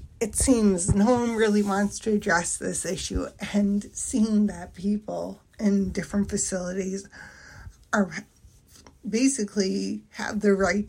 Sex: female